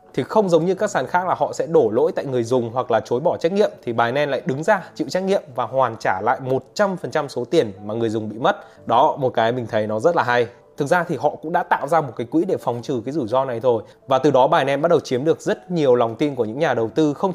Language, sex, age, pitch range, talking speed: Vietnamese, male, 20-39, 120-160 Hz, 305 wpm